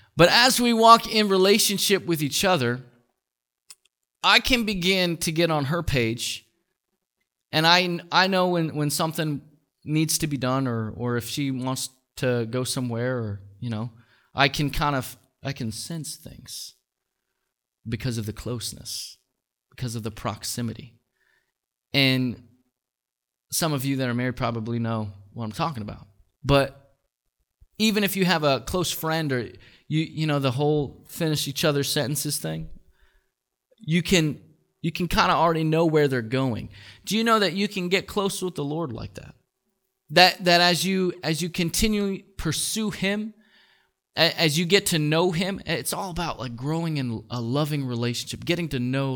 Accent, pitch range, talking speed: American, 120-170 Hz, 170 wpm